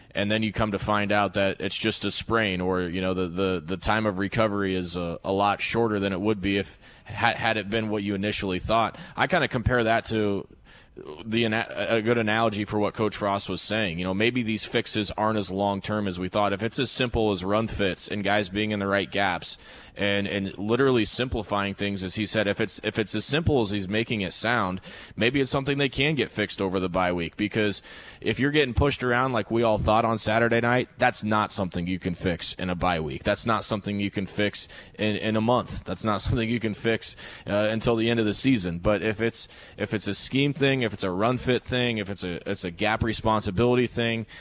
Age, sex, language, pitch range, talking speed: 20-39, male, English, 100-115 Hz, 240 wpm